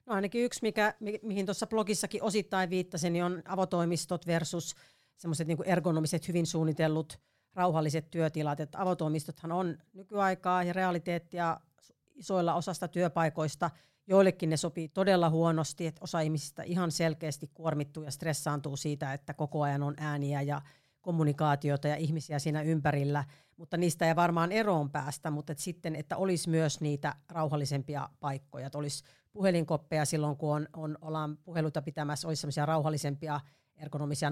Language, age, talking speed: Finnish, 40-59, 140 wpm